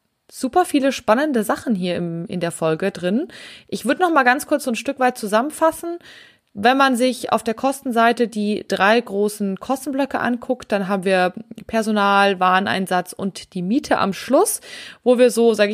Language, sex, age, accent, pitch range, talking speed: German, female, 20-39, German, 195-250 Hz, 175 wpm